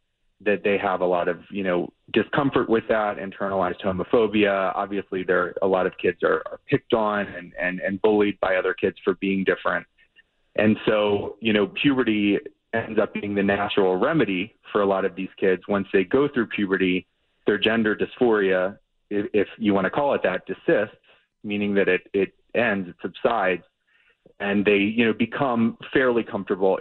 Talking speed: 180 wpm